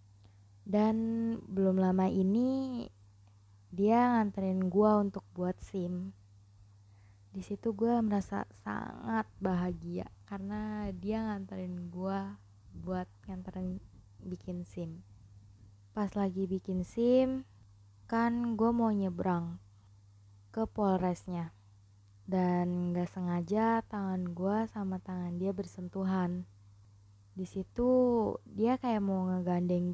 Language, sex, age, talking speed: Indonesian, female, 20-39, 95 wpm